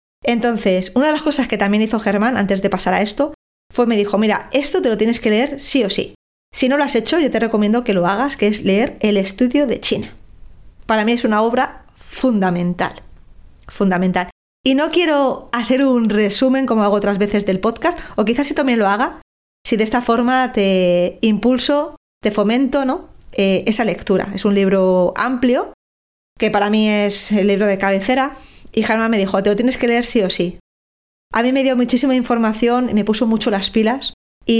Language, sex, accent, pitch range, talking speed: Spanish, female, Spanish, 200-245 Hz, 205 wpm